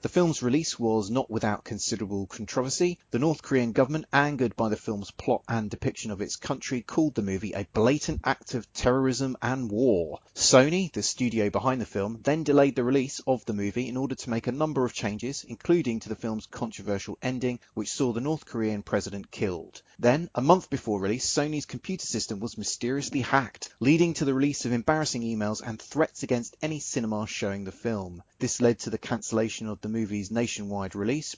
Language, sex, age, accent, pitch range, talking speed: English, male, 30-49, British, 105-140 Hz, 195 wpm